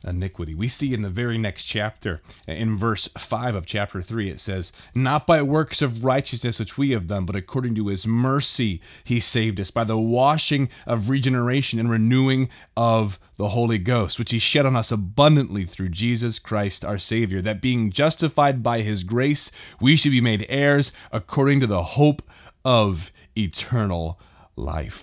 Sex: male